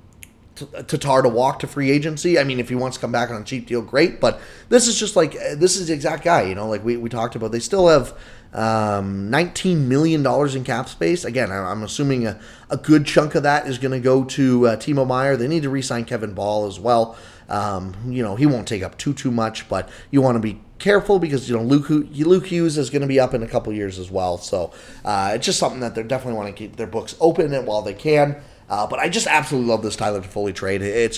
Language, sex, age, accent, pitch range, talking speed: English, male, 30-49, American, 110-150 Hz, 260 wpm